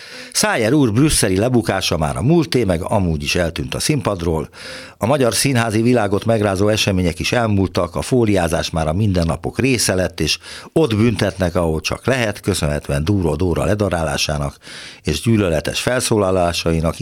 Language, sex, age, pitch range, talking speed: Hungarian, male, 60-79, 85-115 Hz, 140 wpm